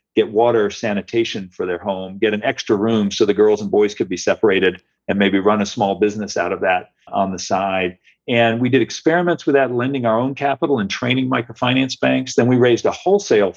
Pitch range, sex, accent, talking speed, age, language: 105-125 Hz, male, American, 215 wpm, 50-69, English